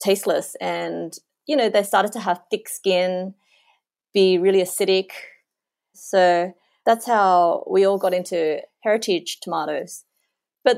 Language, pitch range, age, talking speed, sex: English, 180-225 Hz, 30-49, 130 wpm, female